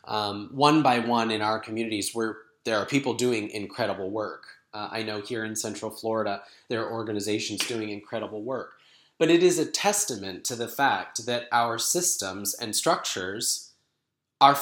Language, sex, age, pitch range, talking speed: English, male, 20-39, 110-135 Hz, 170 wpm